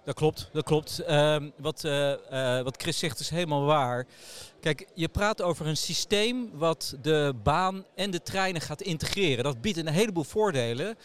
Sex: male